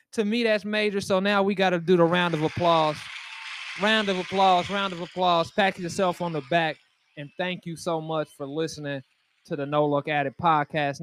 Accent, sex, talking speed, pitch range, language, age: American, male, 210 wpm, 145-210 Hz, English, 20-39